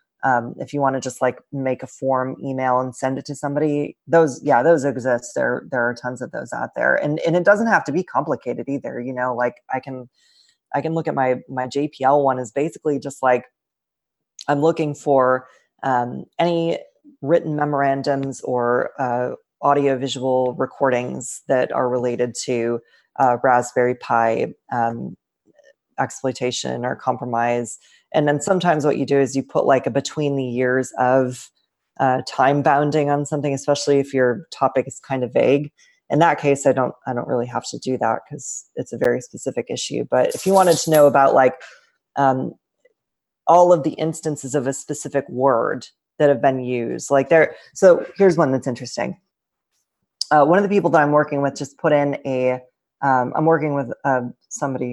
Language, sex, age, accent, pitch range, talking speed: English, female, 20-39, American, 125-150 Hz, 185 wpm